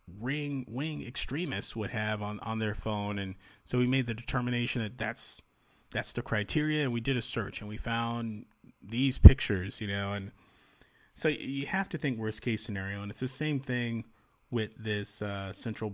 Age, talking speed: 30-49, 190 wpm